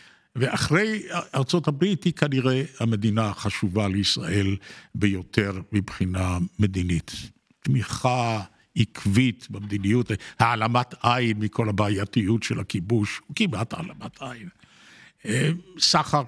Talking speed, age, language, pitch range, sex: 90 wpm, 60-79, Hebrew, 105-140 Hz, male